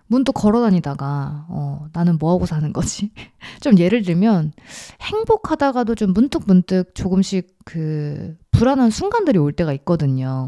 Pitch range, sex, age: 155-220 Hz, female, 20-39